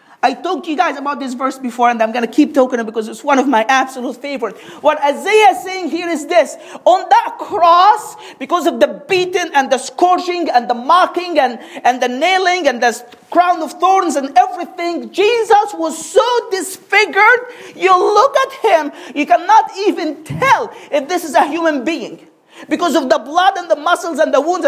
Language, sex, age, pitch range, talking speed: English, male, 40-59, 255-365 Hz, 200 wpm